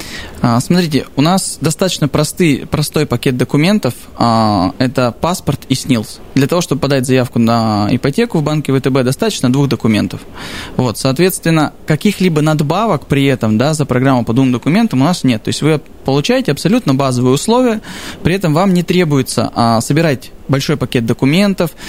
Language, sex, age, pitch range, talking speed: Russian, male, 20-39, 130-170 Hz, 145 wpm